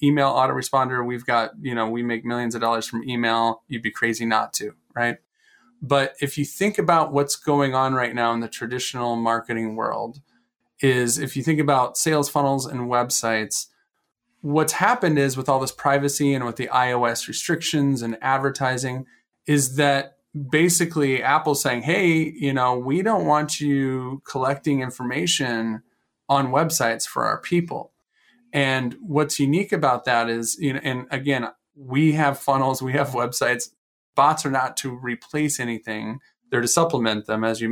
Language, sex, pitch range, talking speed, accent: English, male, 125-155 Hz, 165 wpm, American